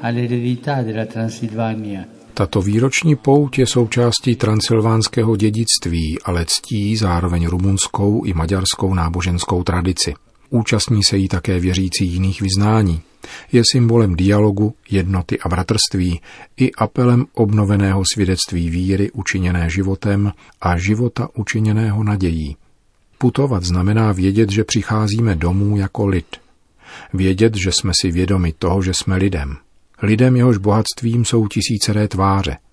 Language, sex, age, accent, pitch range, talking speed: Czech, male, 40-59, native, 90-110 Hz, 115 wpm